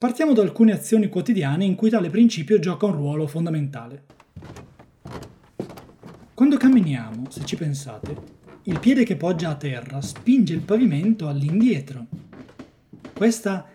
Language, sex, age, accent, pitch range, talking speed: Italian, male, 30-49, native, 150-220 Hz, 125 wpm